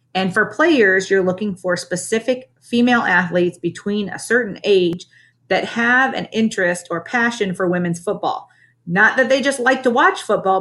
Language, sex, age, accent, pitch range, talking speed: English, female, 40-59, American, 165-220 Hz, 170 wpm